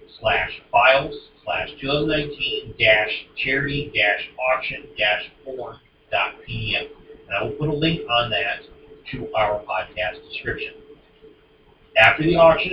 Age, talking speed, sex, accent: 40-59, 110 wpm, male, American